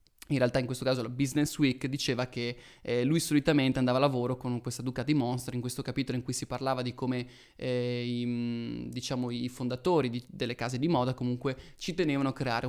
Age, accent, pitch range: 20-39, native, 125-150 Hz